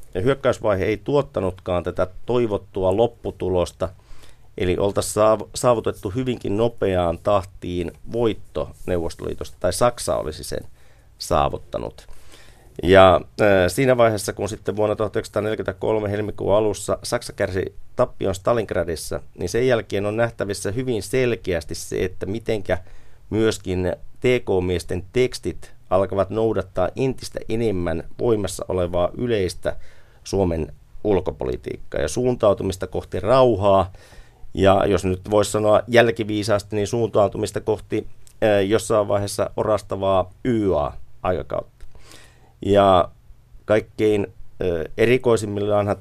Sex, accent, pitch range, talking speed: male, native, 95-115 Hz, 100 wpm